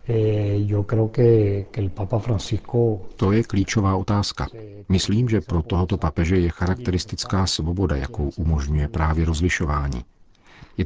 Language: Czech